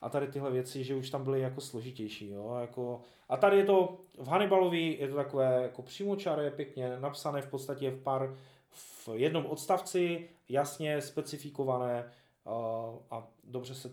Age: 20-39